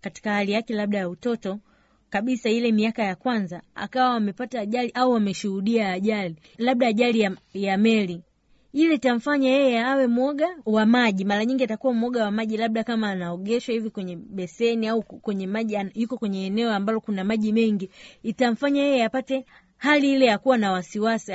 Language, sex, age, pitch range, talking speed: Swahili, female, 30-49, 205-260 Hz, 170 wpm